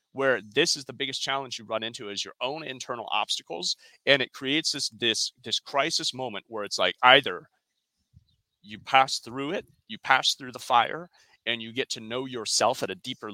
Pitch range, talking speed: 110-135 Hz, 200 wpm